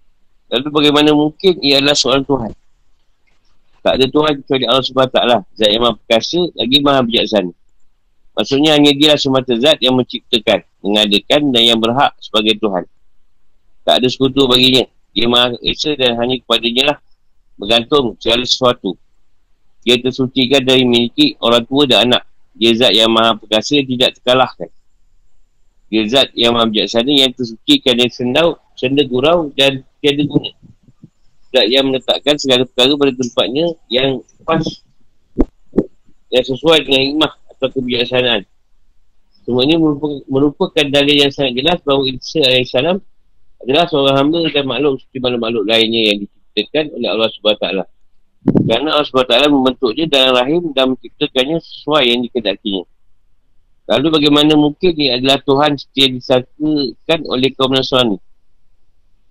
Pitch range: 115-145 Hz